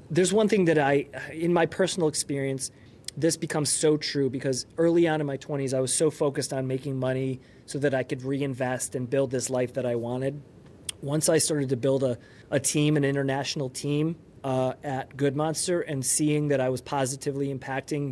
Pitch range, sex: 130-155 Hz, male